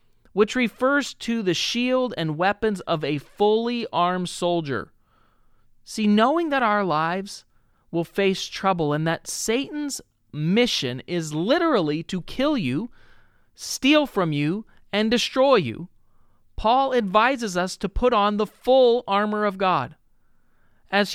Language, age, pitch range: English, 40-59, 175-235 Hz